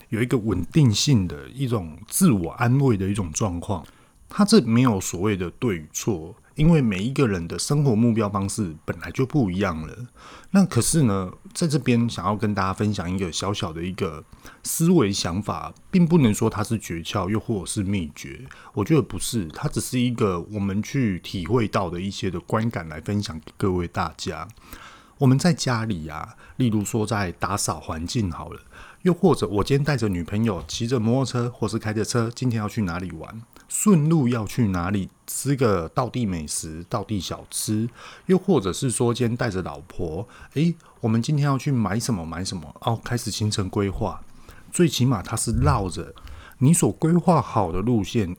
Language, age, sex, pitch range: Chinese, 30-49, male, 95-130 Hz